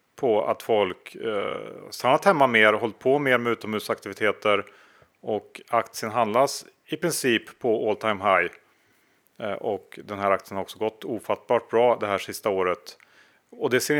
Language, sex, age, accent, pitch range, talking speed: Swedish, male, 30-49, Norwegian, 105-135 Hz, 160 wpm